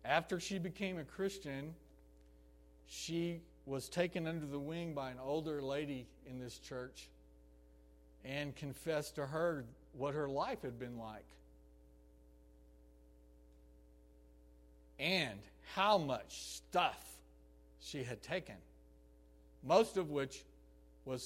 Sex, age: male, 60-79